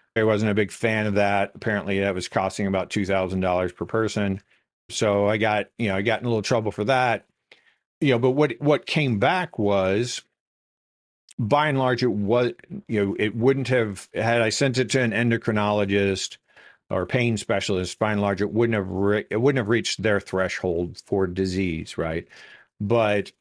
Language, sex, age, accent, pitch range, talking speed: English, male, 50-69, American, 95-115 Hz, 190 wpm